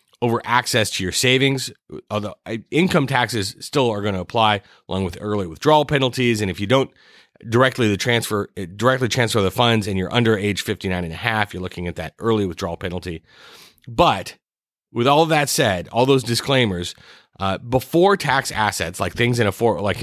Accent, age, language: American, 30-49, English